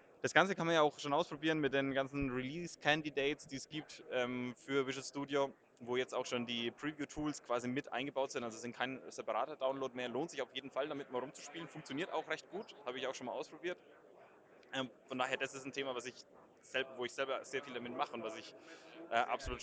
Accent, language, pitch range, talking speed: German, German, 125-140 Hz, 230 wpm